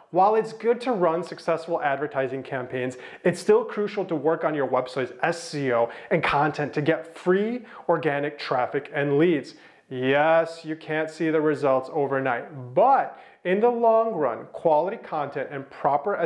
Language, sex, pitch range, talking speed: English, male, 140-190 Hz, 155 wpm